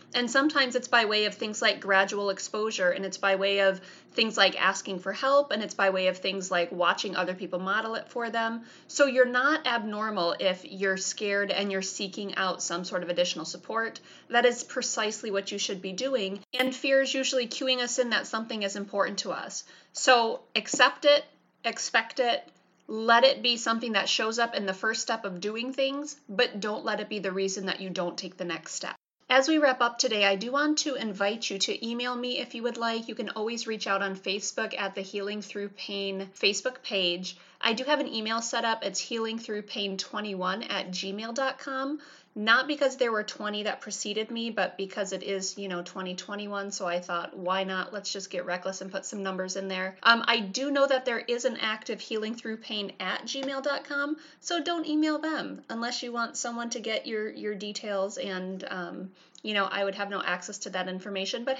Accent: American